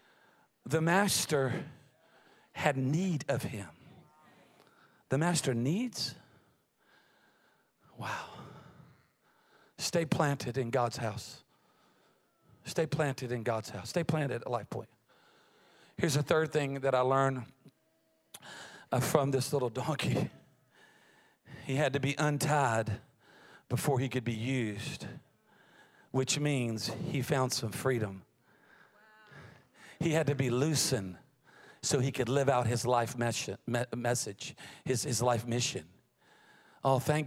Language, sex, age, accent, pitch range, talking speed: English, male, 40-59, American, 125-160 Hz, 115 wpm